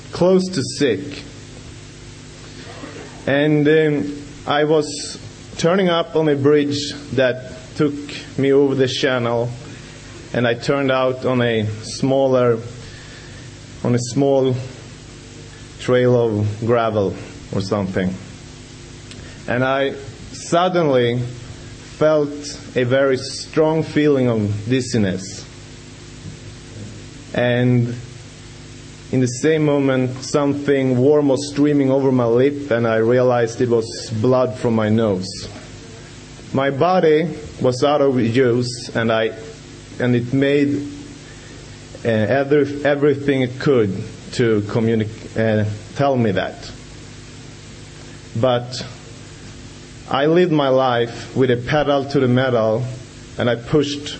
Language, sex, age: English, male, 30-49